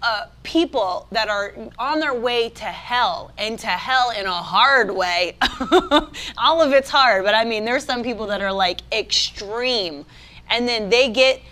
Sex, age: female, 20-39